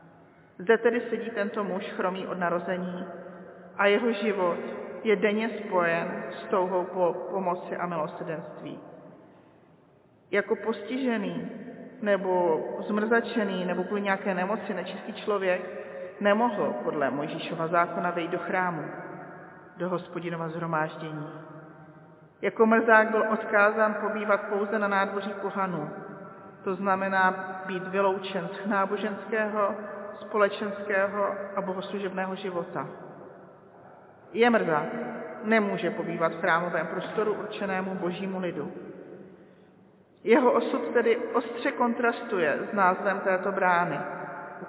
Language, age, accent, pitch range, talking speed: Czech, 40-59, native, 175-205 Hz, 105 wpm